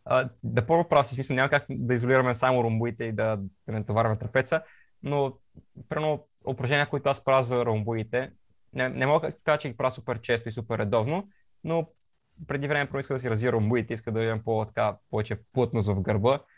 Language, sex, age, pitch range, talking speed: Bulgarian, male, 20-39, 115-135 Hz, 190 wpm